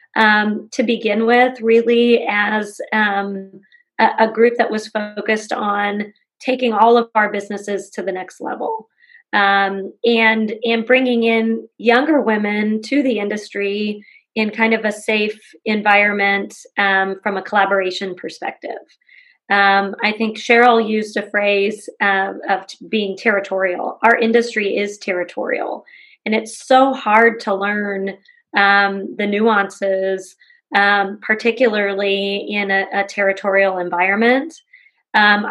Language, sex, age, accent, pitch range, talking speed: English, female, 30-49, American, 195-225 Hz, 130 wpm